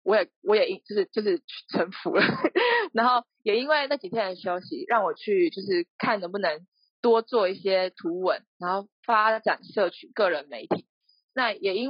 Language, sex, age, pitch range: Chinese, female, 20-39, 185-290 Hz